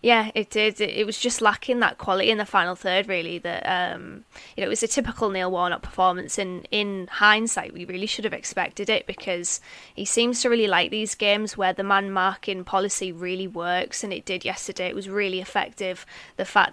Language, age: English, 20-39